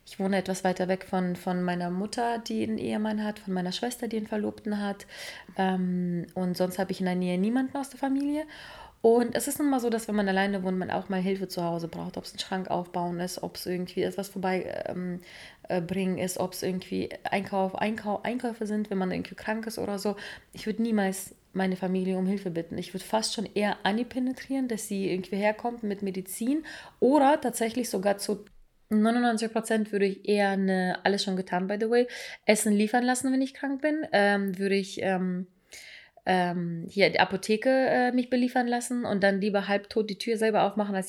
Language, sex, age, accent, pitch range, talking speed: German, female, 30-49, German, 190-225 Hz, 210 wpm